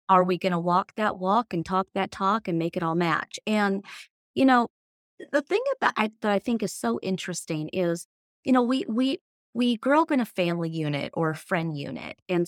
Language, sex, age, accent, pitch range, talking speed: English, female, 30-49, American, 175-215 Hz, 210 wpm